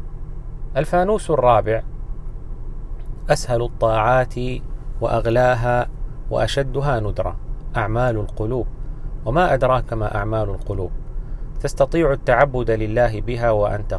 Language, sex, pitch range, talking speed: Arabic, male, 110-135 Hz, 80 wpm